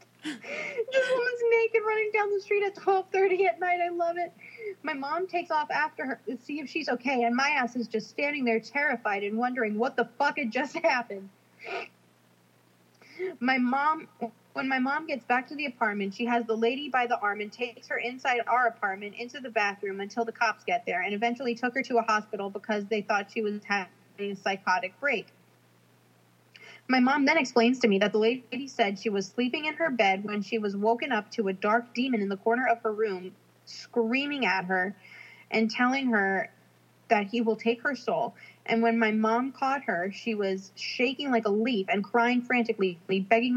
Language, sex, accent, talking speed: English, female, American, 205 wpm